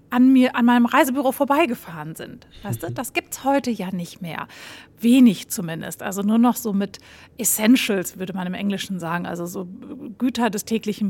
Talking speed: 185 wpm